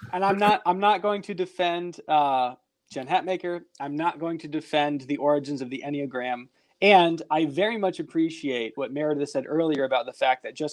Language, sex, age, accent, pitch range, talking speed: English, male, 20-39, American, 135-175 Hz, 195 wpm